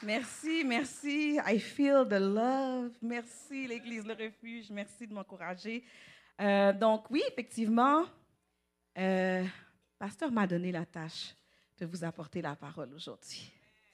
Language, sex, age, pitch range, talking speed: English, female, 40-59, 170-225 Hz, 130 wpm